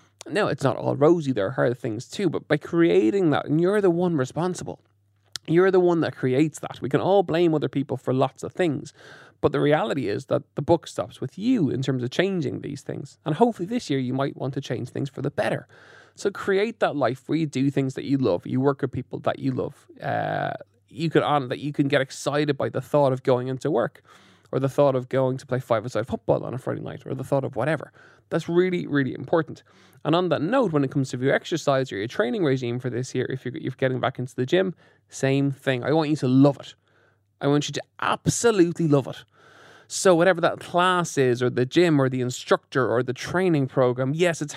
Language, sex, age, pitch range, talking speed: English, male, 20-39, 130-165 Hz, 240 wpm